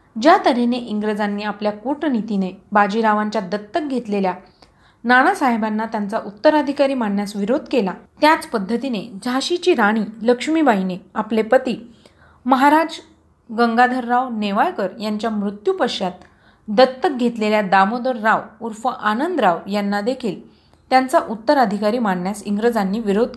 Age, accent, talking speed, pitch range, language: 30-49, native, 100 wpm, 205-260 Hz, Marathi